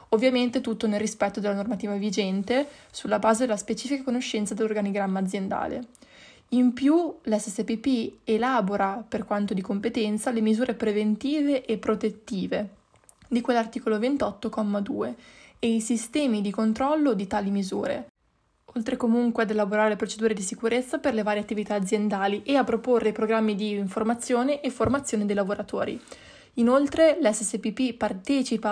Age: 20-39